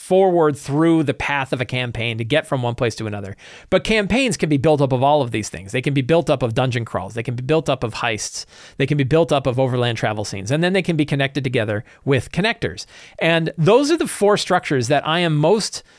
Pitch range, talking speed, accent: 125-170 Hz, 255 wpm, American